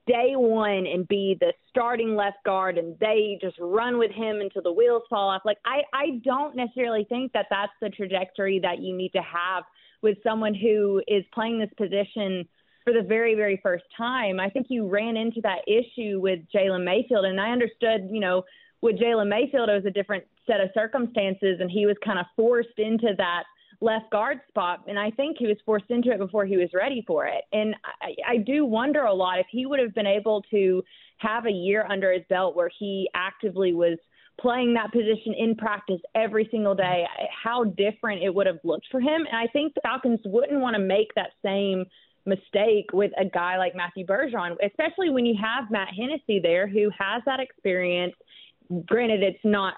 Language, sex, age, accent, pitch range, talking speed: English, female, 30-49, American, 190-230 Hz, 205 wpm